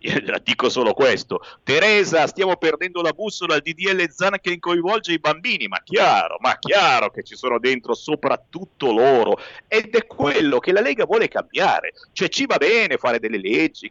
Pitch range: 175-275 Hz